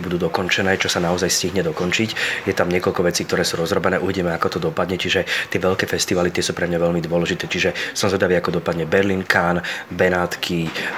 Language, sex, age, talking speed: Slovak, male, 30-49, 190 wpm